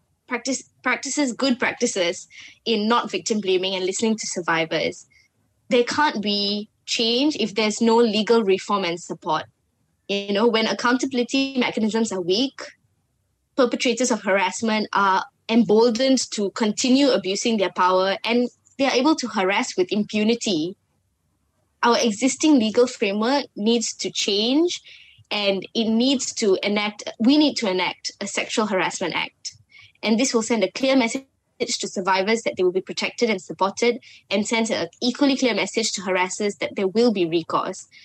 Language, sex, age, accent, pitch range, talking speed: English, female, 10-29, Malaysian, 195-245 Hz, 150 wpm